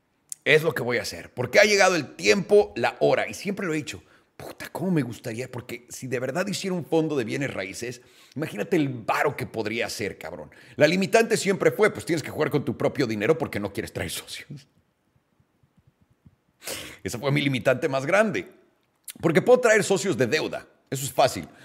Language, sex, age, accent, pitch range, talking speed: Spanish, male, 40-59, Mexican, 130-190 Hz, 195 wpm